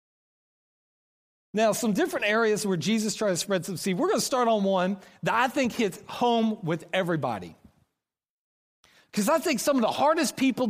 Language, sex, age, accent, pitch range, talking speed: English, male, 40-59, American, 185-275 Hz, 180 wpm